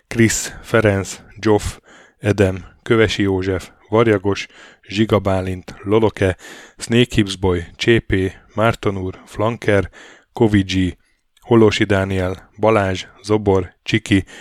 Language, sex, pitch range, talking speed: Hungarian, male, 95-110 Hz, 80 wpm